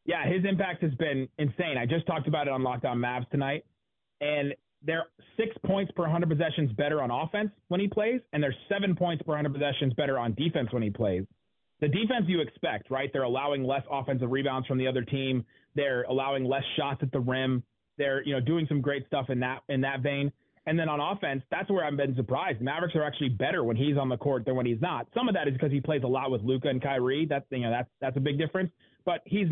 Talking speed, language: 240 wpm, English